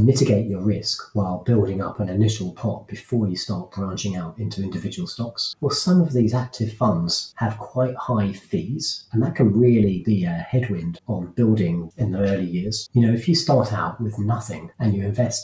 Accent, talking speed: British, 200 wpm